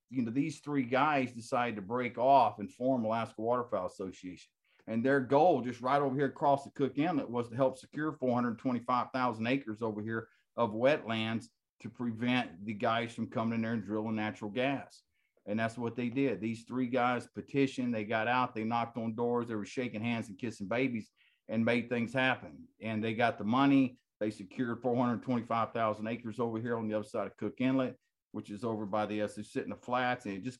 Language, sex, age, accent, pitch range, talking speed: English, male, 50-69, American, 115-135 Hz, 205 wpm